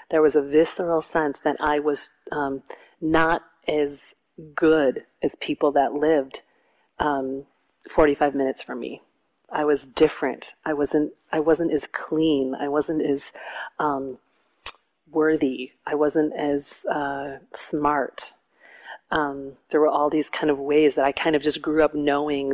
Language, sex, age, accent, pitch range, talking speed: English, female, 40-59, American, 145-160 Hz, 150 wpm